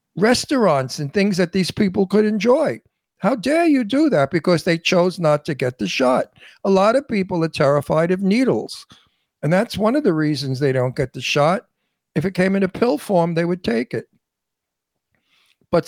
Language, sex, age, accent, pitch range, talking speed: English, male, 60-79, American, 135-165 Hz, 195 wpm